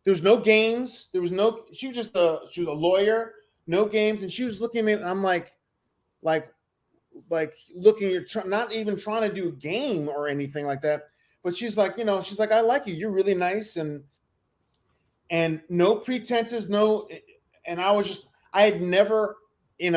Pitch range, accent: 170-210 Hz, American